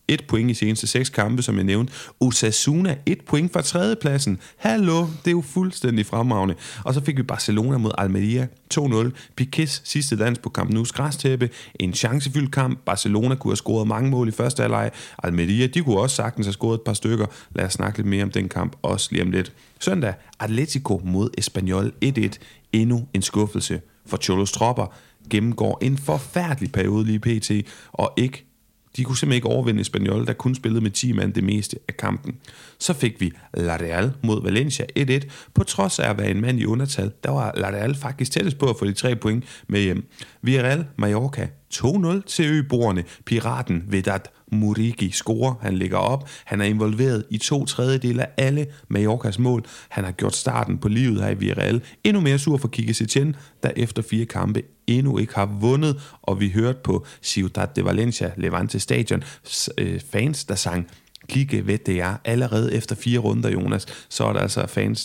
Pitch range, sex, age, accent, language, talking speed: 105-130 Hz, male, 30-49, native, Danish, 190 wpm